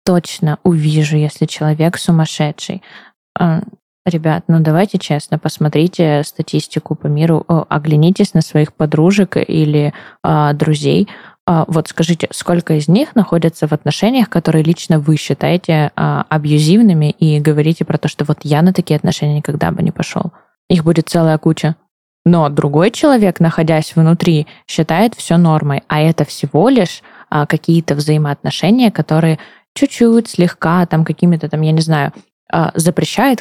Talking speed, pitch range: 140 wpm, 155-175 Hz